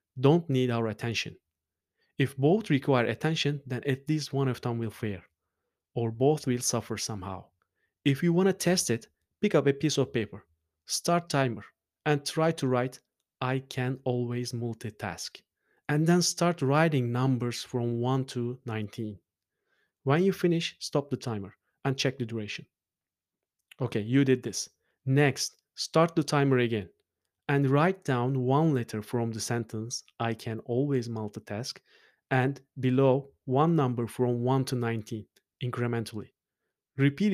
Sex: male